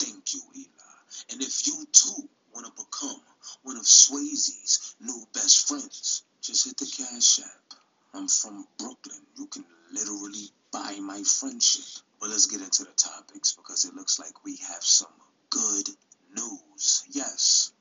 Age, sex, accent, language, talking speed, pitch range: 30-49, male, American, English, 150 wpm, 270-295 Hz